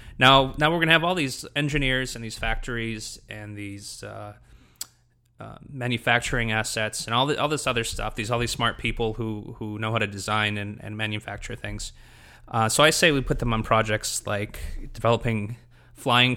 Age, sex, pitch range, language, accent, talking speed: 20-39, male, 110-130 Hz, English, American, 190 wpm